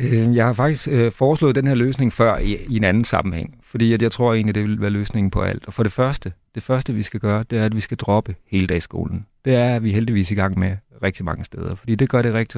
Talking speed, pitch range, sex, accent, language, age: 265 wpm, 105-125 Hz, male, native, Danish, 40-59